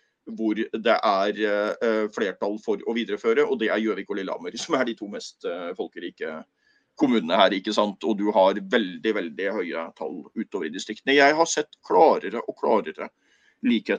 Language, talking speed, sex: English, 180 wpm, male